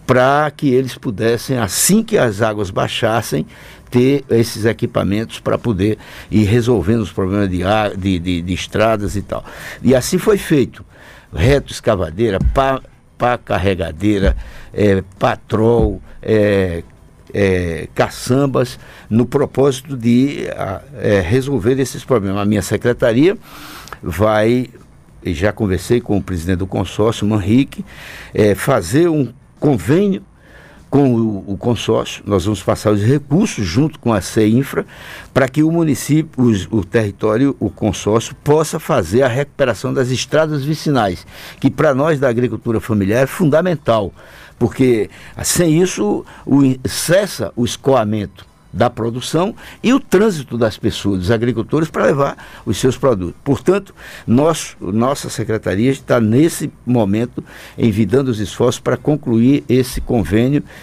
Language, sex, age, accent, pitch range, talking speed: Portuguese, male, 60-79, Brazilian, 105-140 Hz, 130 wpm